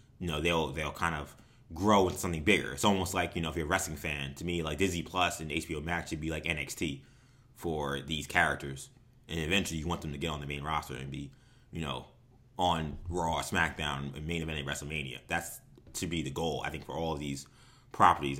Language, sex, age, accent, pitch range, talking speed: English, male, 20-39, American, 80-110 Hz, 225 wpm